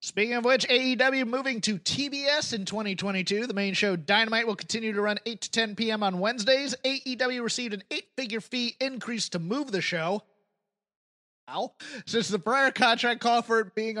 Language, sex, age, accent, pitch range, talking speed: English, male, 30-49, American, 185-230 Hz, 180 wpm